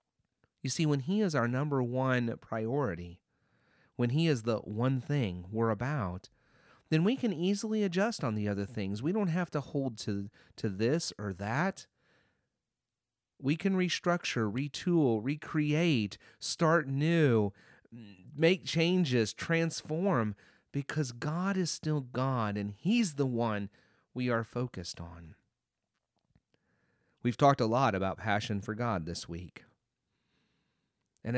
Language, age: English, 40-59